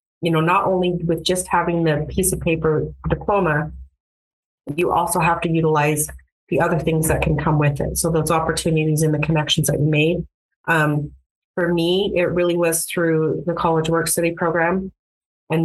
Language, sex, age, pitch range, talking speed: English, female, 30-49, 155-175 Hz, 180 wpm